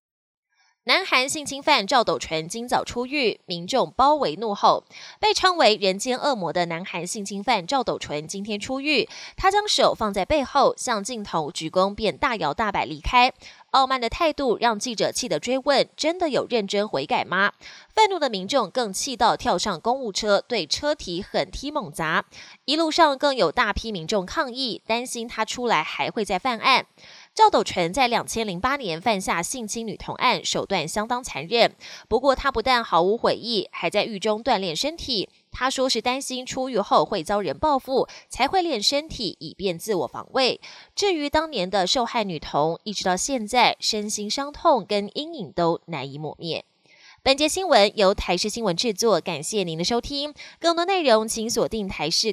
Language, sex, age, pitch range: Chinese, female, 20-39, 195-275 Hz